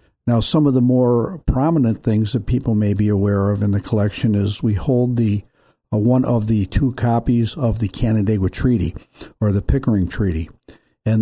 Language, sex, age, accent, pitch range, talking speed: English, male, 50-69, American, 105-125 Hz, 185 wpm